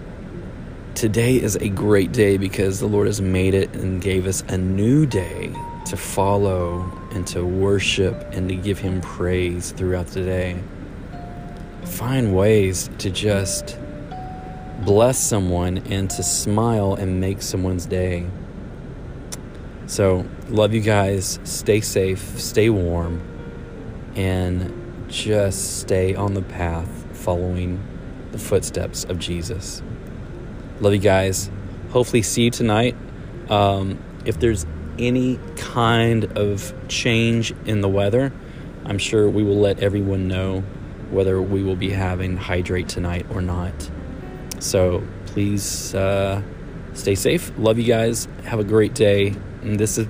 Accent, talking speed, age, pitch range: American, 130 wpm, 30-49, 90-105 Hz